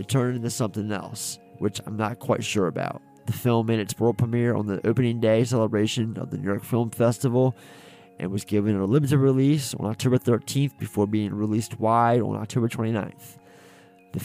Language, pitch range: English, 105-125 Hz